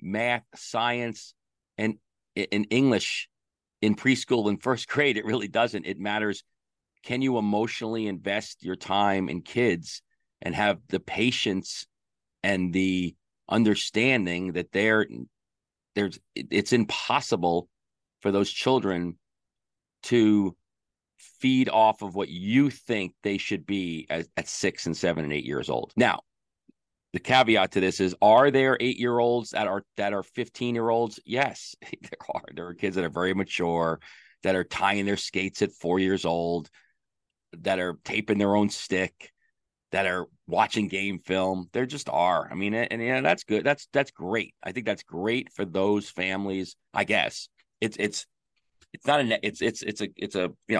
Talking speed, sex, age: 160 wpm, male, 40-59